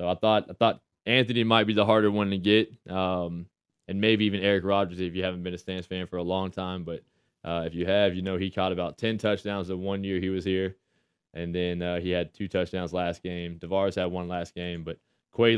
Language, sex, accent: English, male, American